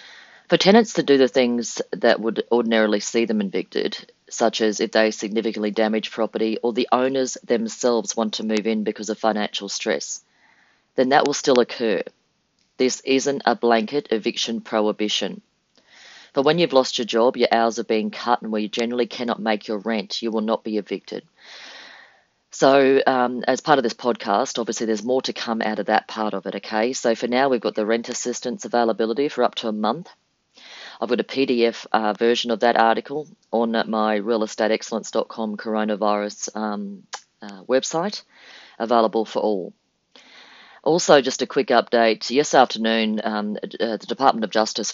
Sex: female